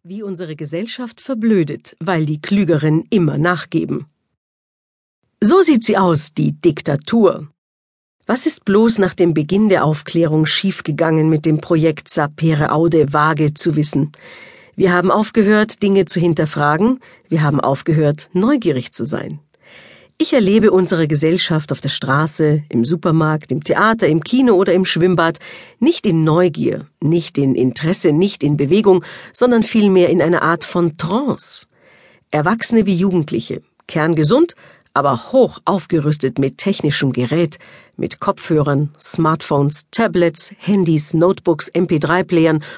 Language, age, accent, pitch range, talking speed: German, 50-69, German, 155-200 Hz, 130 wpm